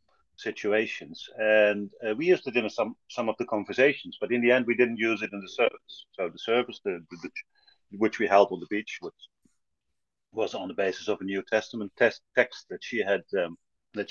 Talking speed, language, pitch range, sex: 215 wpm, English, 95-125 Hz, male